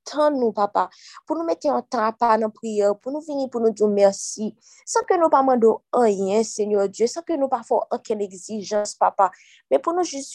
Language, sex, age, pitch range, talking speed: French, female, 20-39, 215-285 Hz, 210 wpm